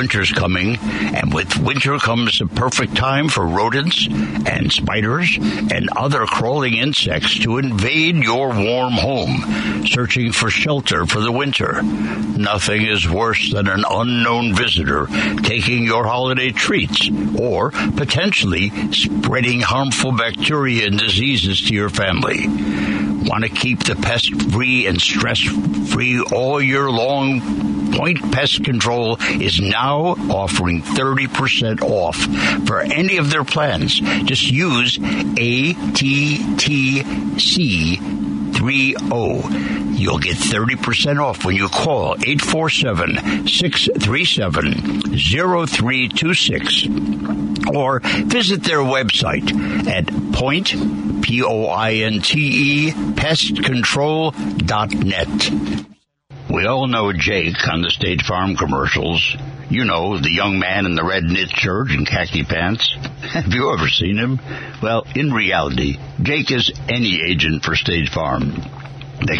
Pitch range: 80-130 Hz